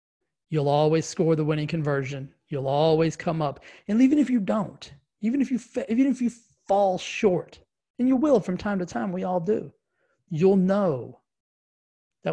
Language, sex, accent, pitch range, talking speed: English, male, American, 145-190 Hz, 175 wpm